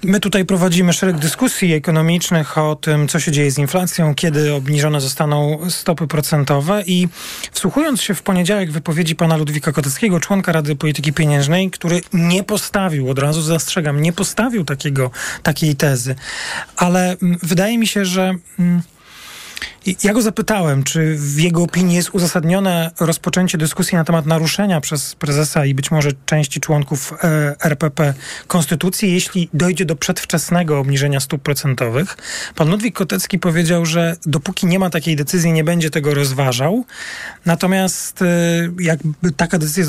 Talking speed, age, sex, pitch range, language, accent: 140 wpm, 30-49, male, 155-185 Hz, Polish, native